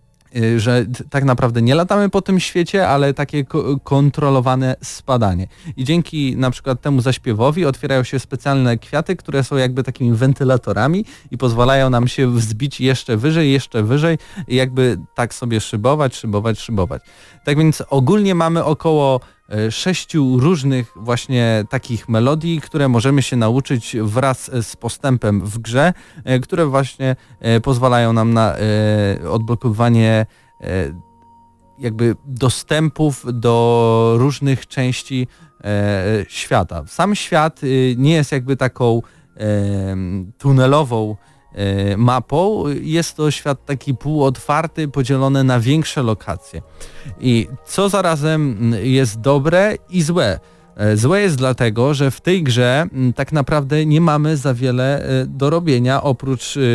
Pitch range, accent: 120-145 Hz, native